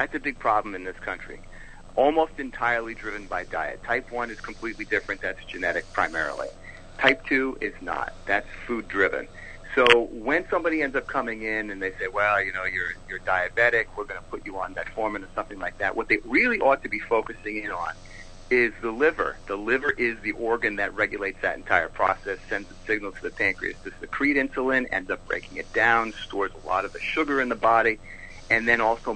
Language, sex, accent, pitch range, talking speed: English, male, American, 100-125 Hz, 210 wpm